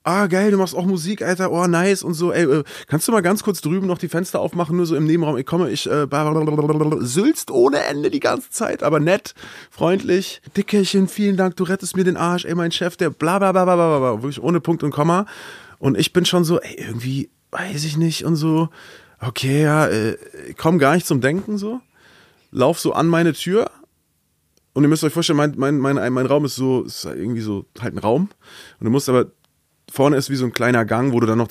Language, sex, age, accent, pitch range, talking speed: German, male, 30-49, German, 125-180 Hz, 230 wpm